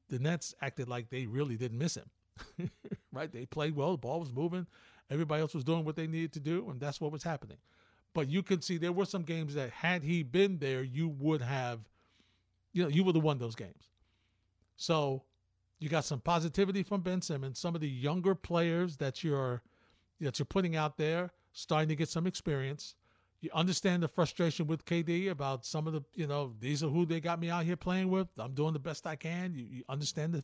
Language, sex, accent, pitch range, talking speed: English, male, American, 135-175 Hz, 220 wpm